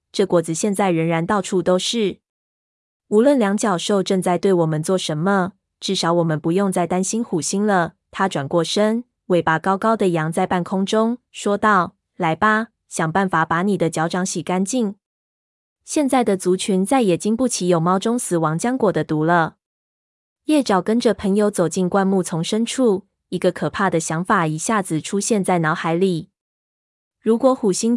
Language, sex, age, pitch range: Chinese, female, 20-39, 175-215 Hz